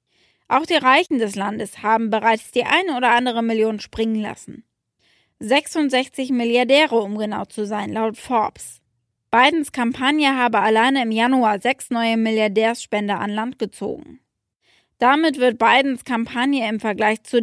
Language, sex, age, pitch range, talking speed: German, female, 20-39, 220-255 Hz, 140 wpm